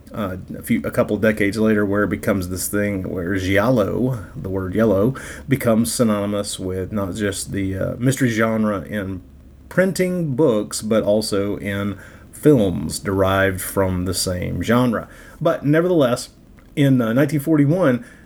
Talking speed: 145 wpm